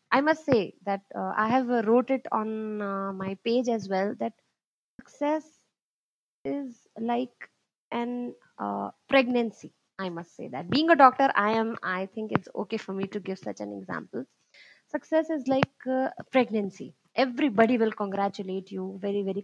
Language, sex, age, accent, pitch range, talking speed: Hindi, female, 20-39, native, 200-255 Hz, 160 wpm